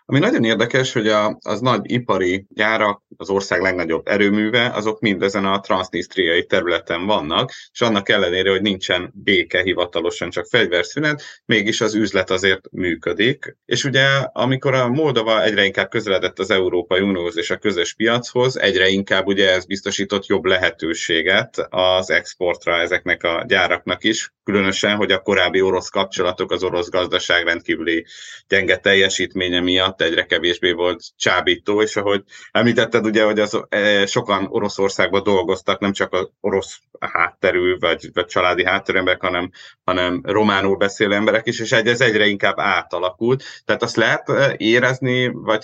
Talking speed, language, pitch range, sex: 145 wpm, Hungarian, 95-110 Hz, male